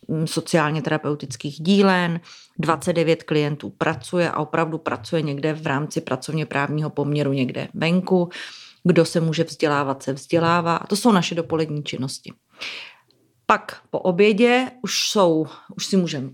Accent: native